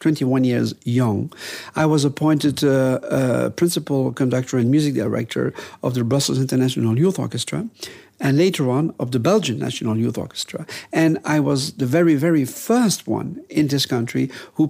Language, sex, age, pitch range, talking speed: Polish, male, 50-69, 125-160 Hz, 165 wpm